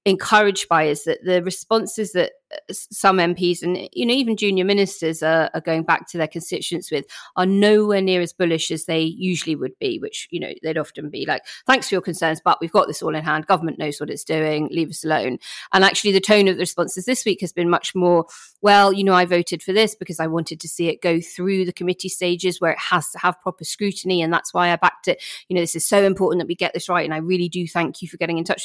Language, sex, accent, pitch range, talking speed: English, female, British, 165-190 Hz, 260 wpm